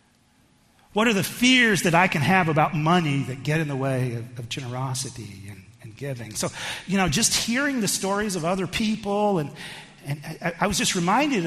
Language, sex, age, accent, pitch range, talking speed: English, male, 40-59, American, 165-225 Hz, 200 wpm